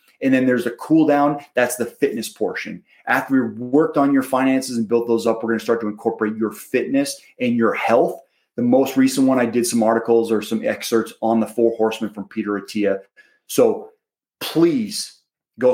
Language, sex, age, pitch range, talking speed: English, male, 30-49, 115-150 Hz, 200 wpm